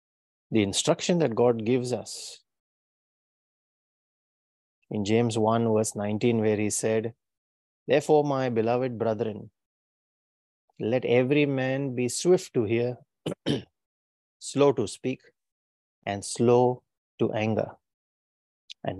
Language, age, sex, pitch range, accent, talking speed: English, 30-49, male, 105-125 Hz, Indian, 105 wpm